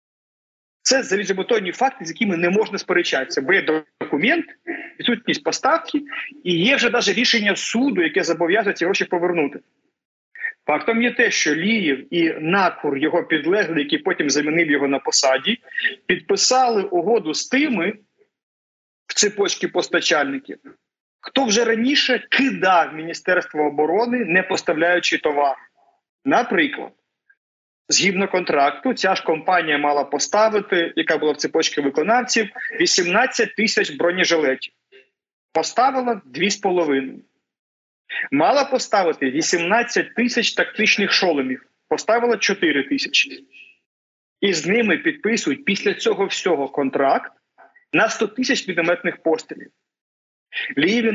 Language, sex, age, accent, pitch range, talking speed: Ukrainian, male, 40-59, native, 170-260 Hz, 115 wpm